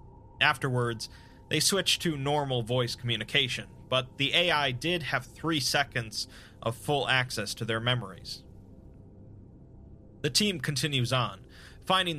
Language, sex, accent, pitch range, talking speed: English, male, American, 115-145 Hz, 125 wpm